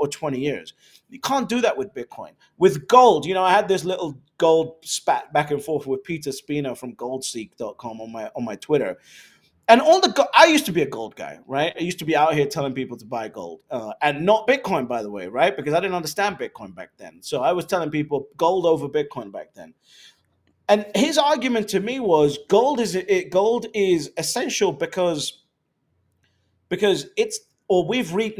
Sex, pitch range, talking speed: male, 150-230 Hz, 205 wpm